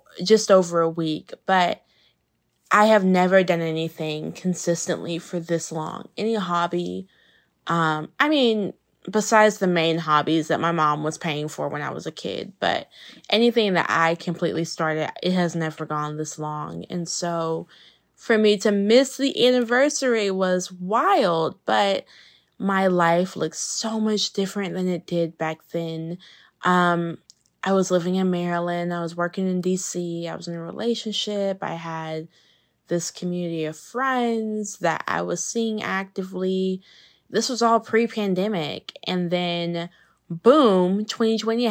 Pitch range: 165-215 Hz